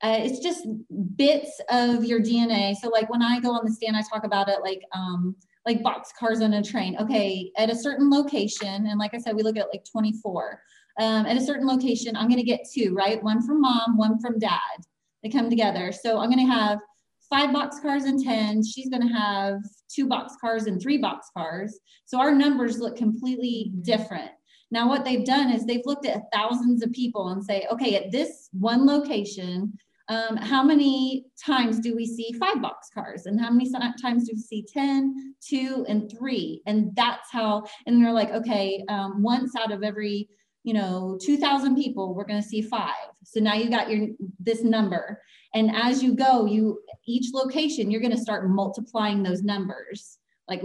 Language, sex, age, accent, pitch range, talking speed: English, female, 20-39, American, 210-245 Hz, 195 wpm